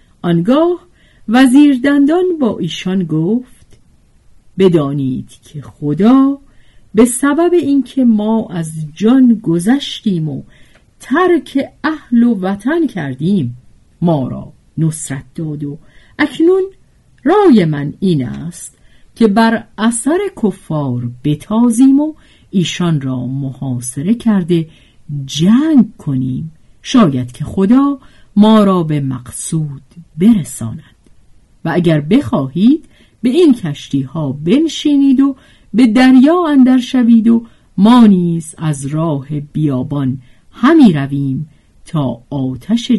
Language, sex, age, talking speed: Persian, female, 50-69, 105 wpm